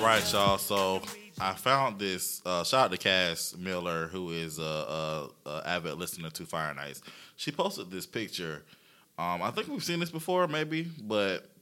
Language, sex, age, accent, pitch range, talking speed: English, male, 20-39, American, 90-110 Hz, 180 wpm